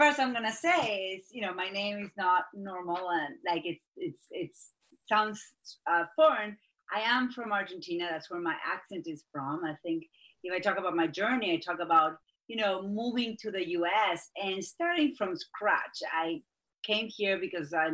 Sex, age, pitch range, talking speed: female, 30-49, 165-235 Hz, 190 wpm